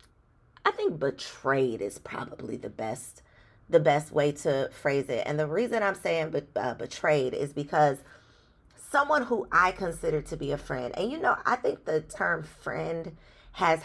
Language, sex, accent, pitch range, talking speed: English, female, American, 140-190 Hz, 175 wpm